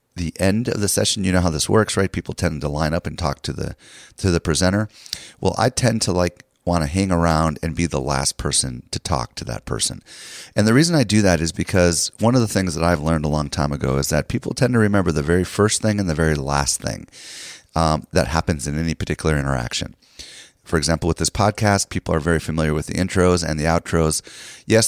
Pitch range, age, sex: 80-100 Hz, 30-49, male